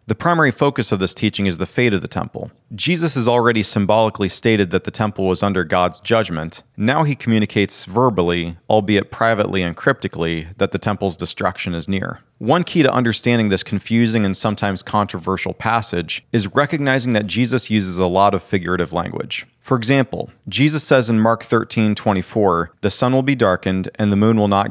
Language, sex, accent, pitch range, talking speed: English, male, American, 95-120 Hz, 185 wpm